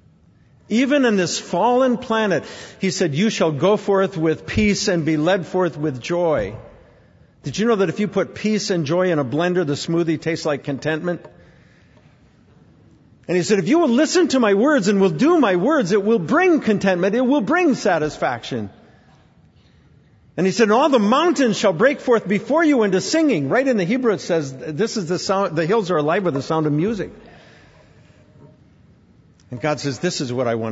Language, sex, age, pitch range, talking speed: English, male, 50-69, 140-200 Hz, 195 wpm